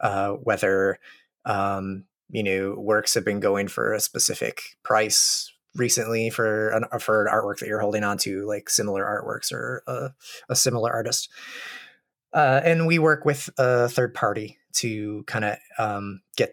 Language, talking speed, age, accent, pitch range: English, 165 wpm, 30-49, American, 100-125 Hz